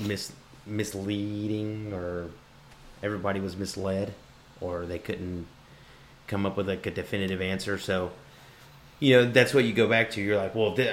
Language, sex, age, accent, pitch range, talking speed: English, male, 30-49, American, 95-110 Hz, 155 wpm